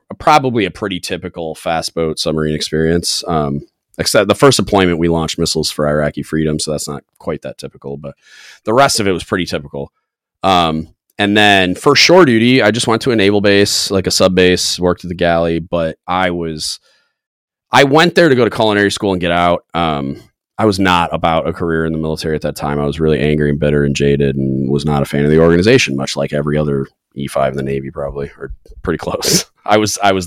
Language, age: English, 30-49